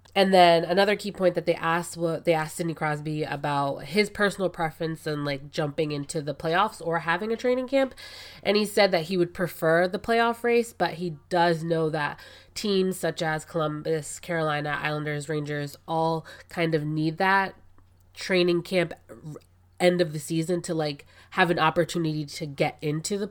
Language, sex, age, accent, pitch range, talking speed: English, female, 20-39, American, 150-175 Hz, 180 wpm